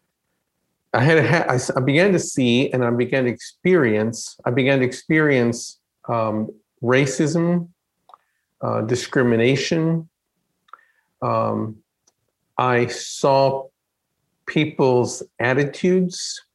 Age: 50-69